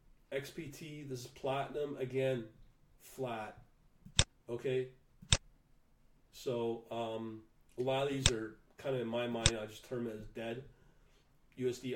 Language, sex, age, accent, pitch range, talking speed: English, male, 40-59, American, 115-140 Hz, 130 wpm